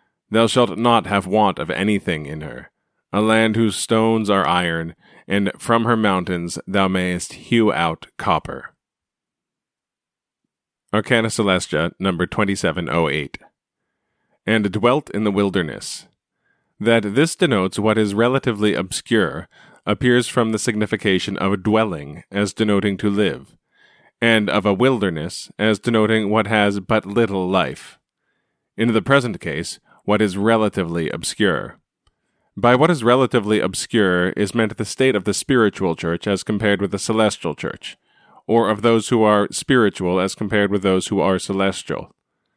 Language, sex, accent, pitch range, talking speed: English, male, American, 95-115 Hz, 145 wpm